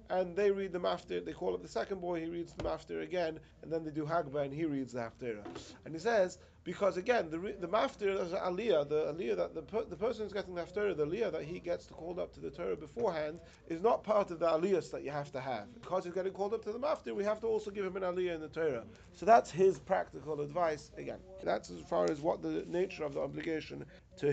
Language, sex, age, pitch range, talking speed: English, male, 30-49, 155-200 Hz, 260 wpm